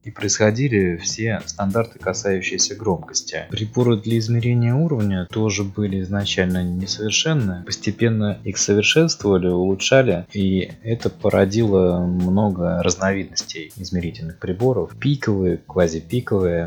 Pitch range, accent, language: 90-110 Hz, native, Russian